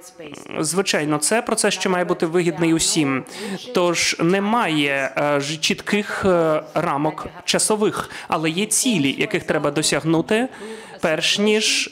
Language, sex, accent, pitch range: Ukrainian, male, native, 155-210 Hz